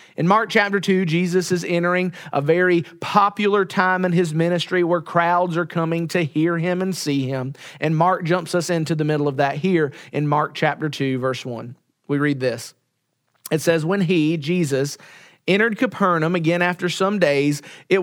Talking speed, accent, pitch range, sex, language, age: 185 wpm, American, 160-205 Hz, male, English, 40-59